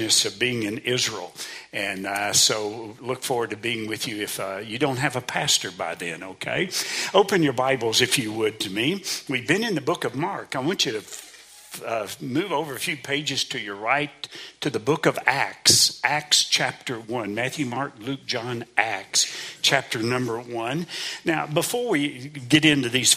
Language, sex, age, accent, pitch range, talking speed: English, male, 60-79, American, 115-145 Hz, 190 wpm